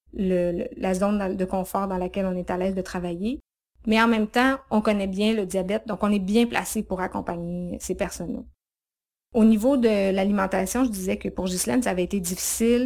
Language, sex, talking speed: French, female, 205 wpm